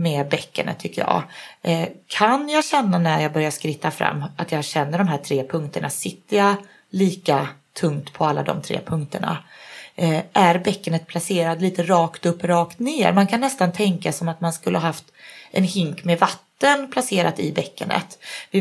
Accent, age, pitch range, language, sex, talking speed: native, 30-49, 165-195 Hz, Swedish, female, 175 wpm